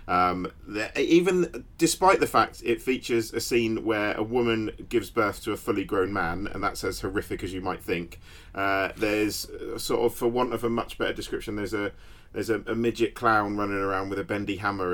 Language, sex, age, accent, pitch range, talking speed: English, male, 40-59, British, 95-120 Hz, 205 wpm